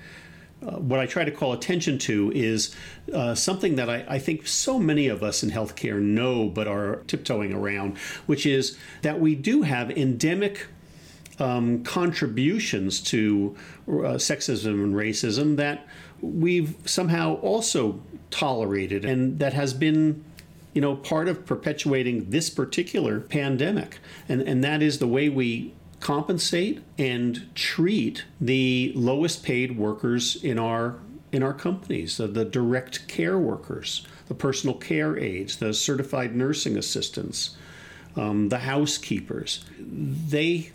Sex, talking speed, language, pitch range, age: male, 135 wpm, English, 110-155 Hz, 50-69